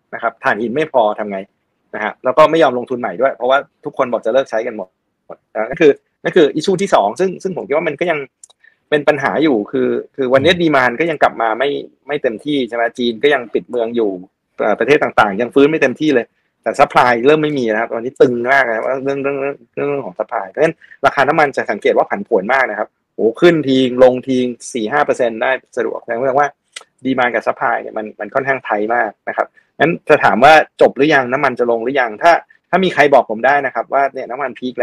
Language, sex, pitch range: Thai, male, 115-150 Hz